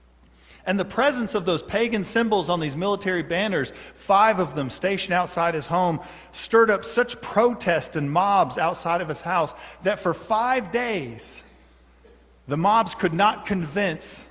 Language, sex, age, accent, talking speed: English, male, 40-59, American, 155 wpm